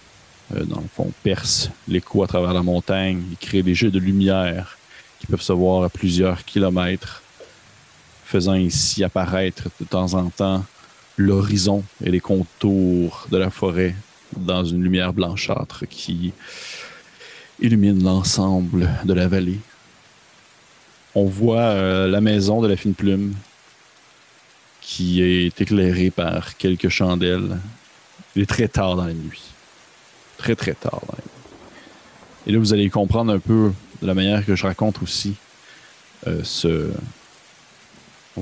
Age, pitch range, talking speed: 30-49, 90-105 Hz, 140 wpm